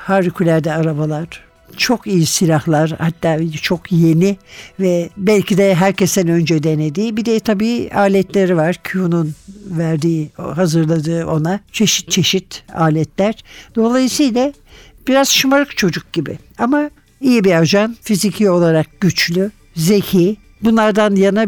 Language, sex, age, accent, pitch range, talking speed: Turkish, male, 60-79, native, 175-215 Hz, 115 wpm